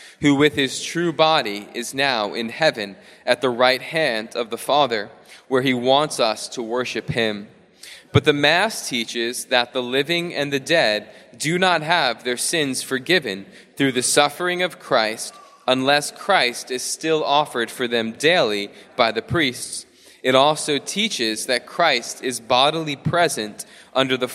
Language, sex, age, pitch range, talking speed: English, male, 20-39, 120-155 Hz, 160 wpm